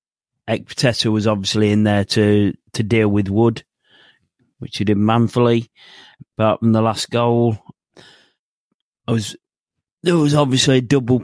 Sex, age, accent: male, 30-49, British